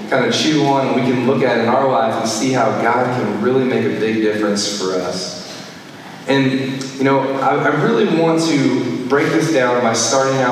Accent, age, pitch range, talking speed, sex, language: American, 20-39, 115-155 Hz, 220 wpm, male, English